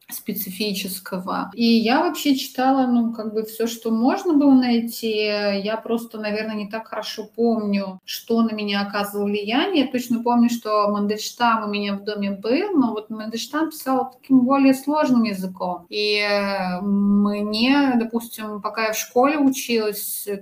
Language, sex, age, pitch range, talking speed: Russian, female, 30-49, 205-240 Hz, 150 wpm